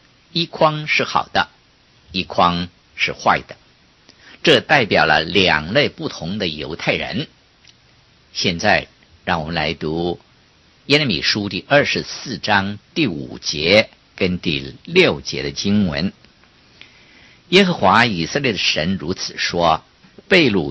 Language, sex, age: Chinese, male, 50-69